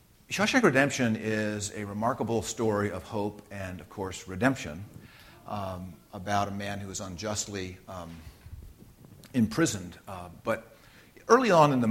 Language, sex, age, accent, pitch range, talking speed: English, male, 50-69, American, 95-115 Hz, 135 wpm